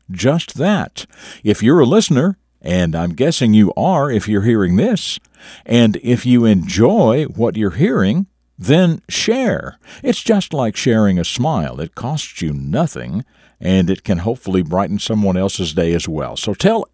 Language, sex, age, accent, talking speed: English, male, 60-79, American, 165 wpm